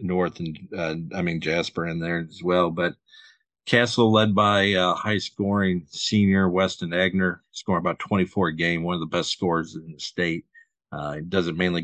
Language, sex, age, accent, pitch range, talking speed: English, male, 50-69, American, 85-95 Hz, 195 wpm